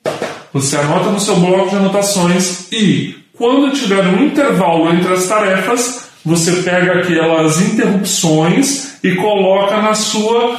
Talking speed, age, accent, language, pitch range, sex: 130 wpm, 20-39, Brazilian, Portuguese, 180-225 Hz, female